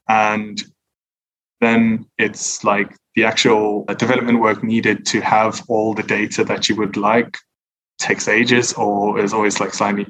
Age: 20-39